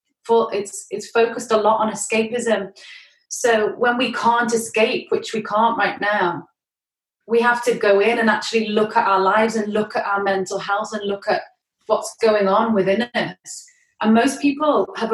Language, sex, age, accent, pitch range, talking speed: English, female, 30-49, British, 205-230 Hz, 185 wpm